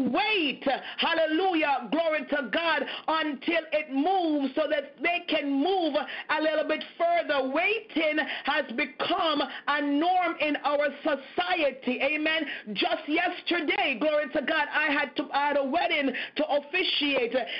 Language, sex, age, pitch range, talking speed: English, female, 40-59, 280-320 Hz, 135 wpm